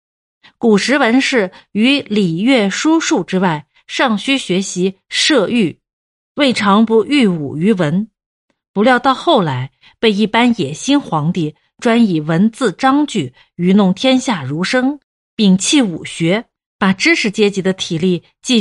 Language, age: Chinese, 50-69